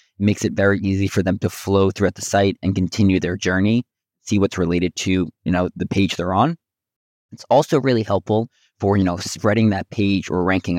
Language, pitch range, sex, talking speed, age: English, 95-110 Hz, male, 205 wpm, 20-39